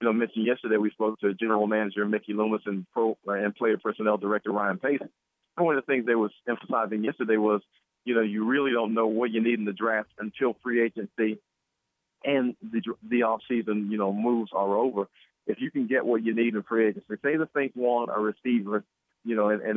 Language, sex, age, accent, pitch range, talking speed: English, male, 40-59, American, 105-120 Hz, 220 wpm